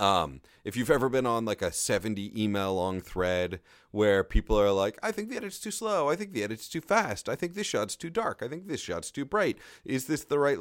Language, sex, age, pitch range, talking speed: English, male, 30-49, 100-130 Hz, 250 wpm